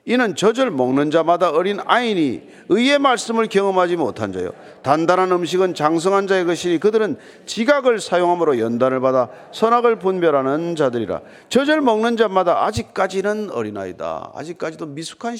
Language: Korean